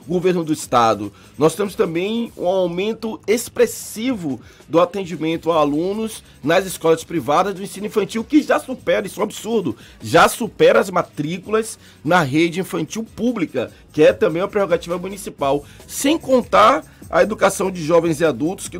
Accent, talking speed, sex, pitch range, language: Brazilian, 155 wpm, male, 145-200 Hz, Portuguese